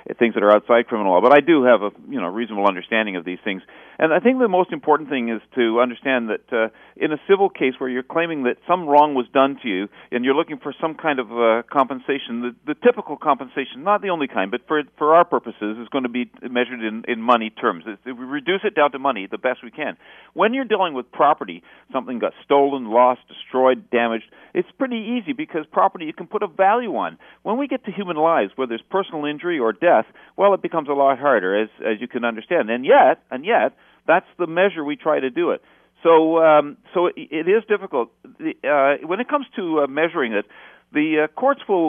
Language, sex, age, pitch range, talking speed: English, male, 50-69, 120-170 Hz, 235 wpm